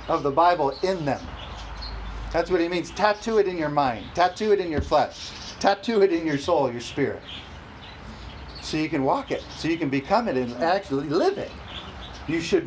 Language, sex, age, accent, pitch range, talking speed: English, male, 40-59, American, 125-165 Hz, 200 wpm